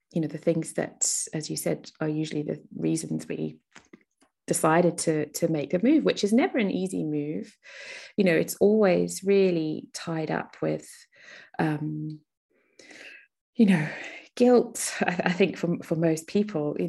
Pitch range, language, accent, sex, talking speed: 145-170 Hz, English, British, female, 160 wpm